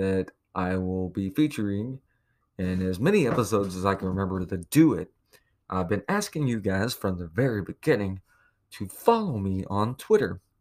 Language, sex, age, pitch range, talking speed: English, male, 30-49, 95-145 Hz, 170 wpm